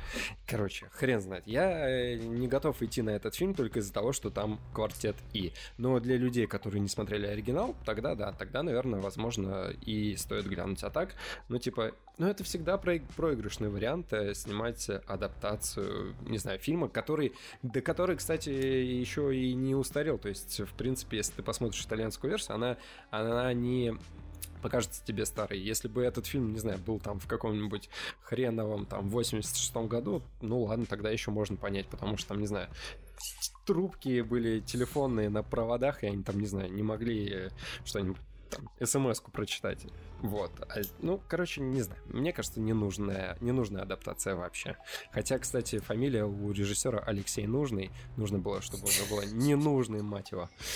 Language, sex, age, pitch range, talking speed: Russian, male, 20-39, 100-125 Hz, 165 wpm